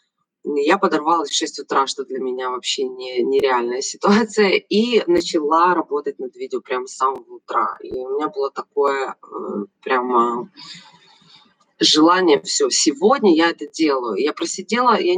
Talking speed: 145 wpm